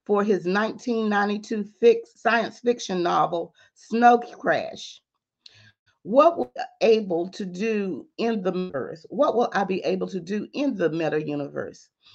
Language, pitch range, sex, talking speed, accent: English, 185-230 Hz, female, 125 wpm, American